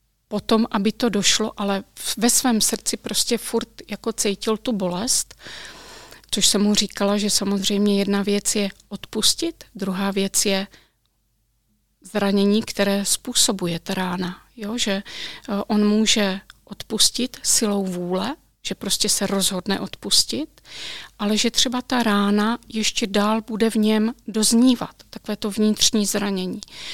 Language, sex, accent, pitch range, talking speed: Czech, female, native, 200-225 Hz, 130 wpm